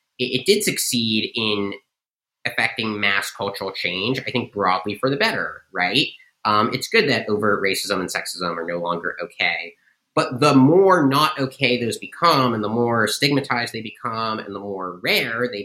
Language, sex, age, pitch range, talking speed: English, male, 30-49, 100-130 Hz, 175 wpm